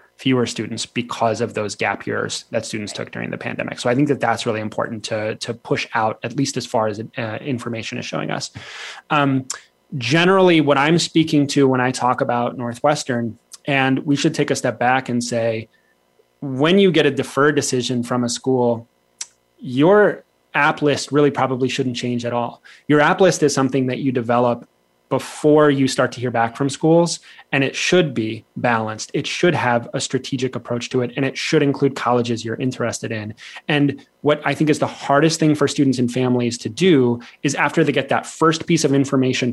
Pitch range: 120-150 Hz